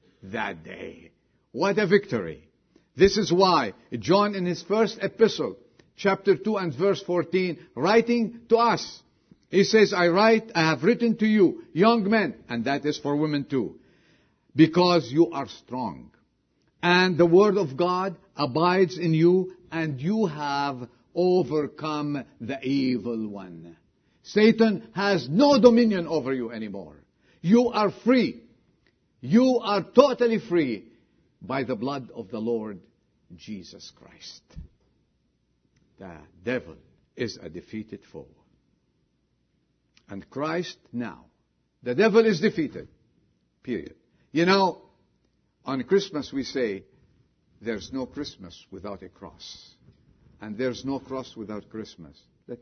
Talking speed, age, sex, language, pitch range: 130 wpm, 50-69, male, English, 120-195 Hz